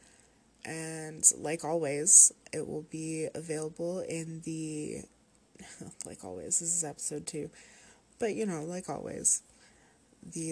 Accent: American